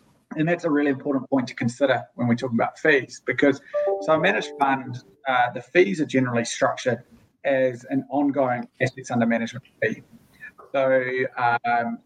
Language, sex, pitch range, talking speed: English, male, 120-145 Hz, 165 wpm